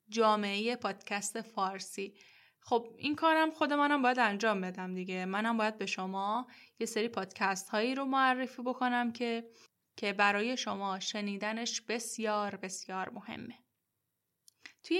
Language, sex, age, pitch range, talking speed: Persian, female, 10-29, 200-245 Hz, 130 wpm